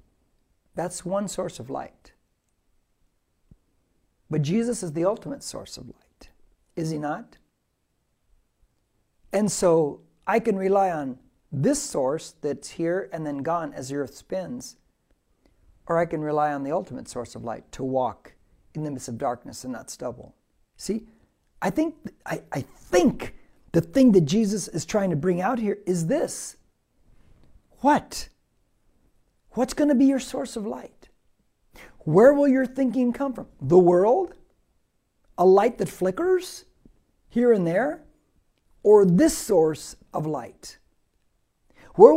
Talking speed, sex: 145 wpm, male